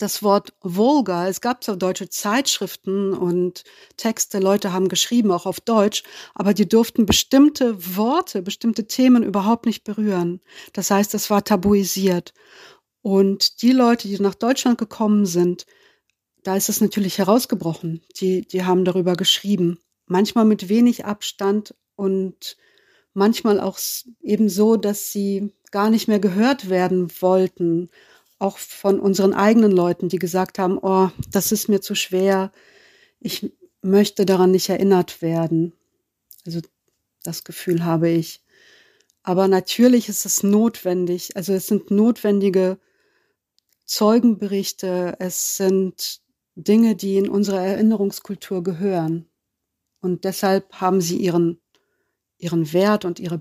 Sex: female